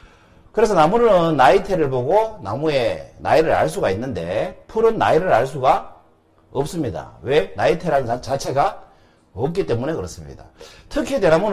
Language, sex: Korean, male